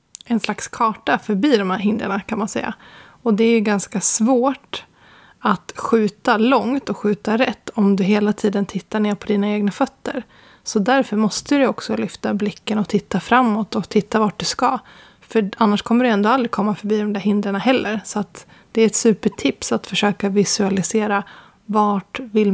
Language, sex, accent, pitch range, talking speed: Swedish, female, native, 205-230 Hz, 185 wpm